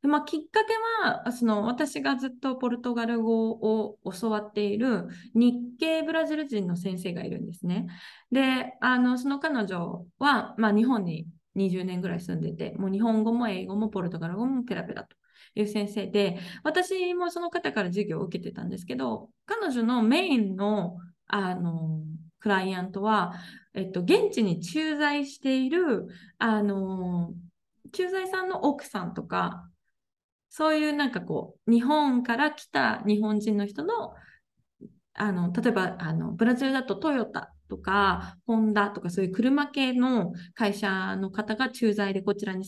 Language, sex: Japanese, female